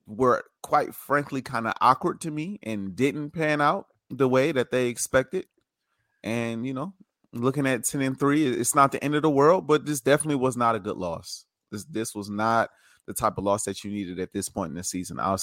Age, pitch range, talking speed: 30-49, 105-135 Hz, 225 wpm